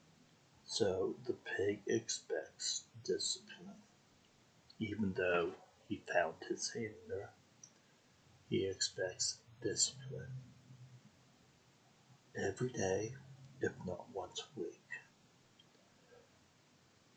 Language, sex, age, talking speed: English, male, 60-79, 75 wpm